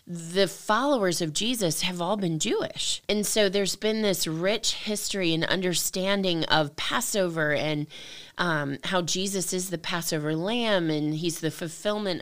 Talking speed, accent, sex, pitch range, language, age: 150 wpm, American, female, 150-190 Hz, English, 20-39